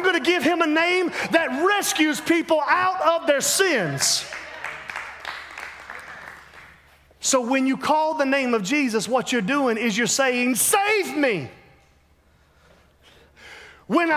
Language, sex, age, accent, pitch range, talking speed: English, male, 40-59, American, 270-345 Hz, 125 wpm